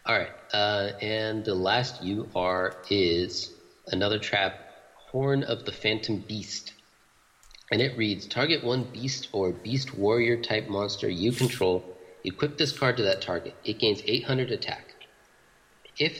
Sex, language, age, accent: male, English, 30-49, American